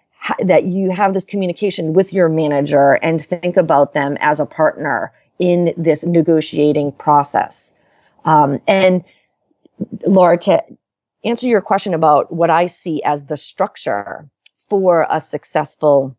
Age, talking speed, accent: 30-49, 135 wpm, American